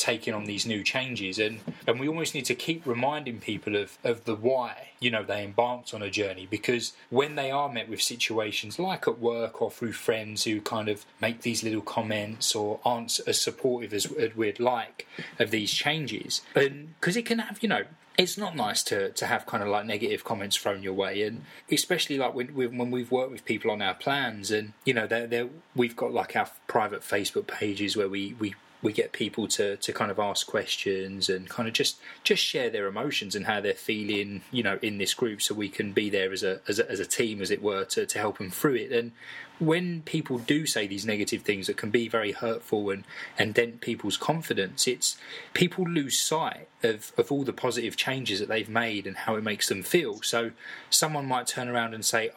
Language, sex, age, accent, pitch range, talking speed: English, male, 20-39, British, 105-145 Hz, 220 wpm